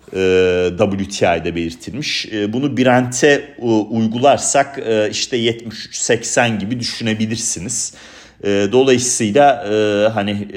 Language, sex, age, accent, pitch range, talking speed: Turkish, male, 40-59, native, 100-110 Hz, 60 wpm